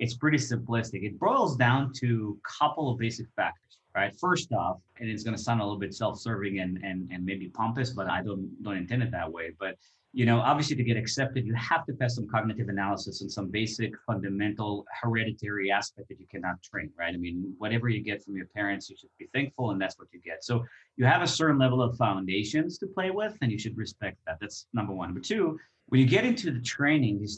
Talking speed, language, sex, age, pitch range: 235 wpm, English, male, 30-49, 105-135 Hz